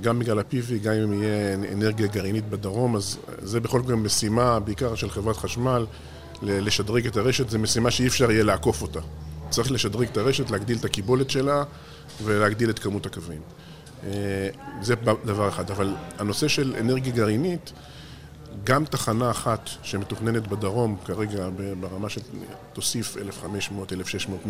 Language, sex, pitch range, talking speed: Hebrew, male, 100-125 Hz, 140 wpm